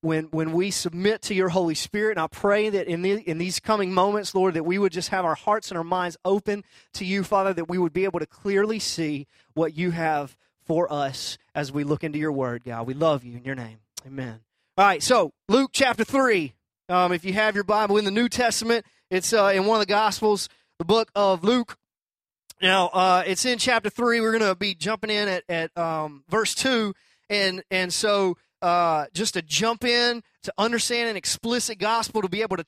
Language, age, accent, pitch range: English, 30-49, American, 165-220 Hz